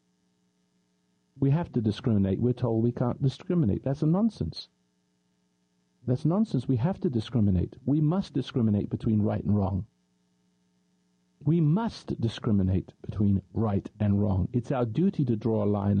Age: 50-69